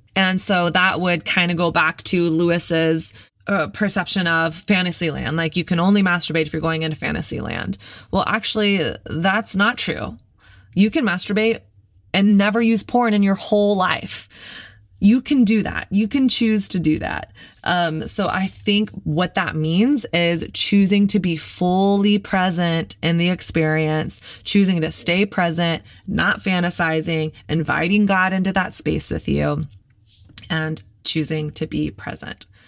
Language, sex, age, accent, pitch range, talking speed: English, female, 20-39, American, 155-190 Hz, 160 wpm